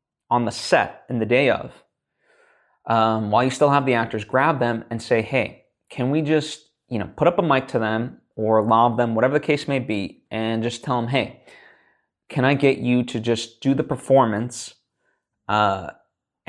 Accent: American